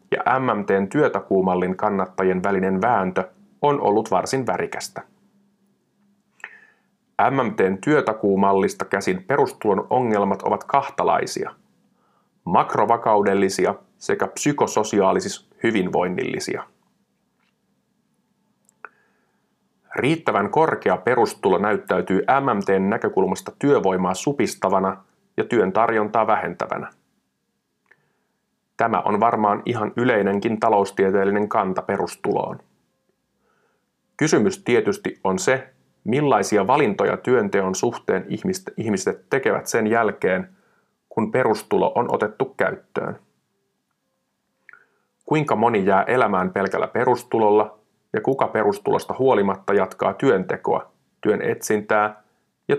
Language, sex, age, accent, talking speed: Finnish, male, 30-49, native, 85 wpm